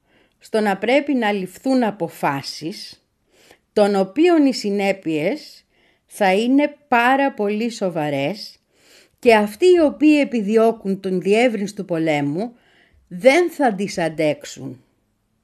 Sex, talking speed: female, 110 wpm